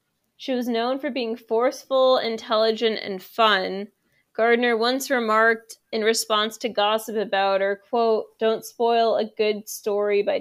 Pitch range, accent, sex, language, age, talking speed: 205-240 Hz, American, female, English, 20-39, 145 wpm